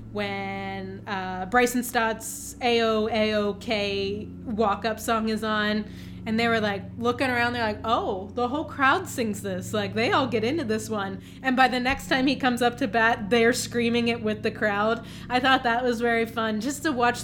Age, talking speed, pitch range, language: 20-39, 190 wpm, 205-245 Hz, English